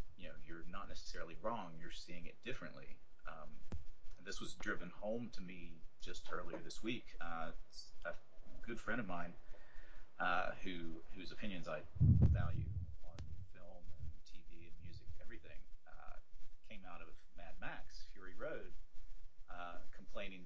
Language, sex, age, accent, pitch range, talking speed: English, male, 30-49, American, 85-95 Hz, 145 wpm